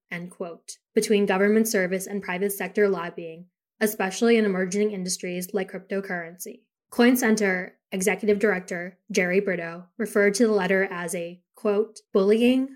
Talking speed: 135 wpm